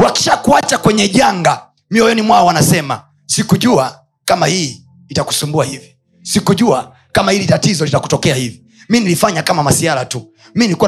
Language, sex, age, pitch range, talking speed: Swahili, male, 30-49, 150-230 Hz, 130 wpm